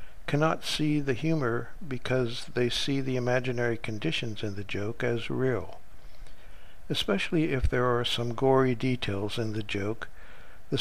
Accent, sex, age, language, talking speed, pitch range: American, male, 60-79, English, 145 wpm, 115-135 Hz